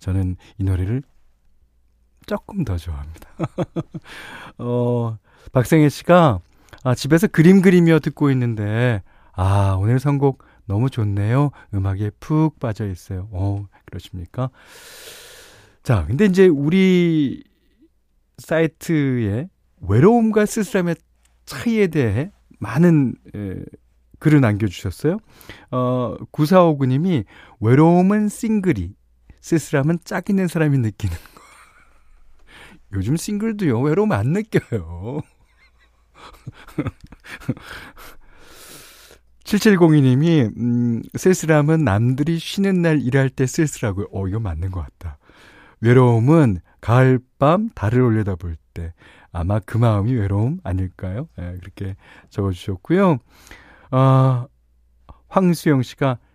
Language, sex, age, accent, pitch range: Korean, male, 40-59, native, 95-160 Hz